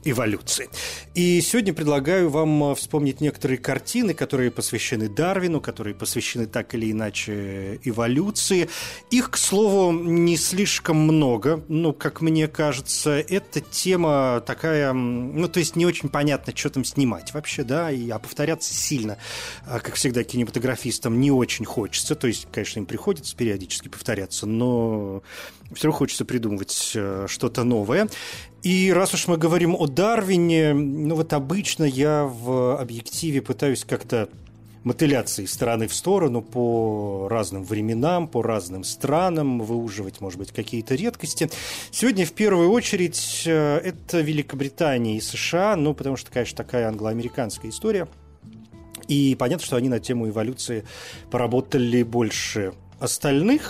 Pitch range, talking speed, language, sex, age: 115-155 Hz, 135 wpm, Russian, male, 30-49